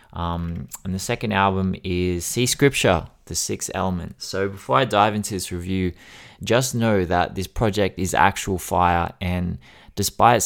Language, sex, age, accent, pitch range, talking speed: English, male, 20-39, Australian, 90-110 Hz, 160 wpm